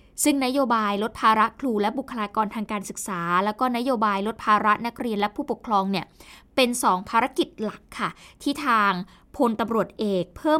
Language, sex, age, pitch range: Thai, female, 20-39, 210-265 Hz